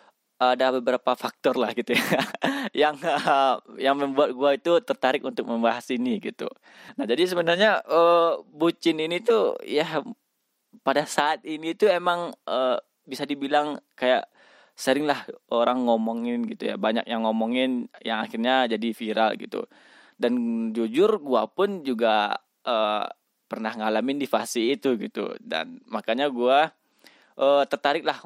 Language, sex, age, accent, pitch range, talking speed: Indonesian, male, 20-39, native, 115-170 Hz, 125 wpm